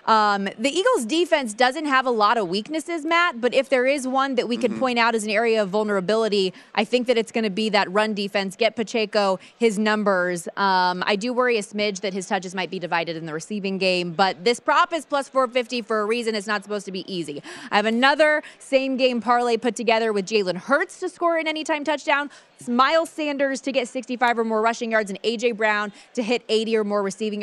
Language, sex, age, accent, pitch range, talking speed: English, female, 20-39, American, 200-250 Hz, 230 wpm